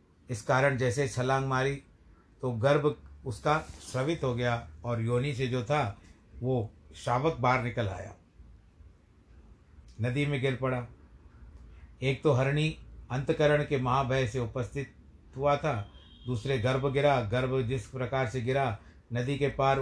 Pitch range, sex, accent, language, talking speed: 100-135 Hz, male, native, Hindi, 140 wpm